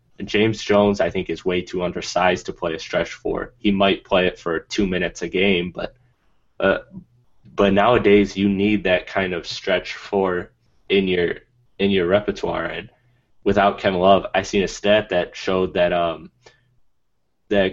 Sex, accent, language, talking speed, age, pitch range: male, American, English, 175 wpm, 20-39, 95-105 Hz